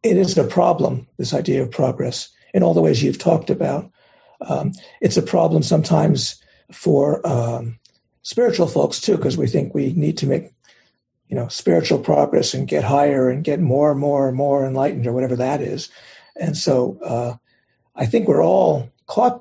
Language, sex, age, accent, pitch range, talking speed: English, male, 60-79, American, 120-150 Hz, 180 wpm